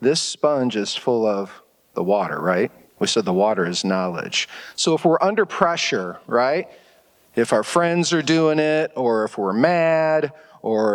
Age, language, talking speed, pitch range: 40-59, English, 170 wpm, 110-160 Hz